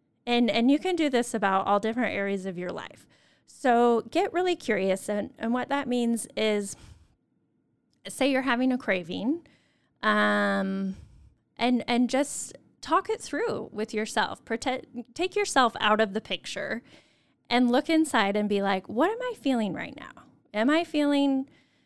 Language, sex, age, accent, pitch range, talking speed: English, female, 10-29, American, 205-270 Hz, 160 wpm